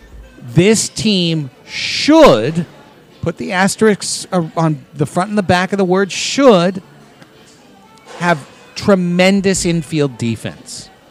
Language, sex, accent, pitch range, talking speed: English, male, American, 145-185 Hz, 110 wpm